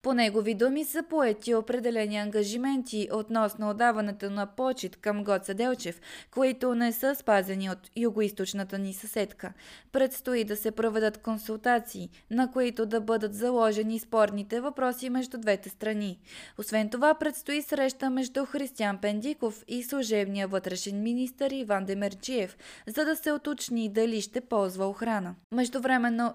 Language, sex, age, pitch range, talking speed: Bulgarian, female, 20-39, 205-255 Hz, 135 wpm